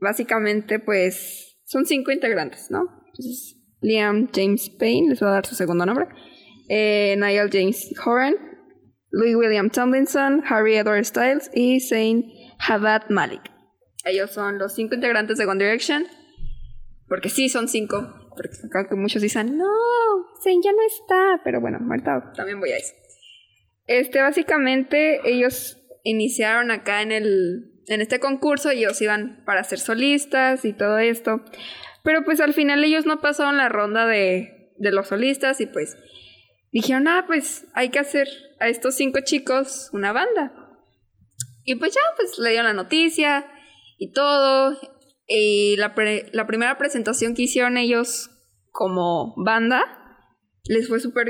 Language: Spanish